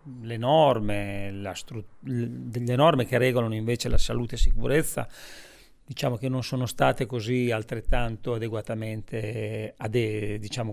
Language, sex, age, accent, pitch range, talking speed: Italian, male, 40-59, native, 110-130 Hz, 130 wpm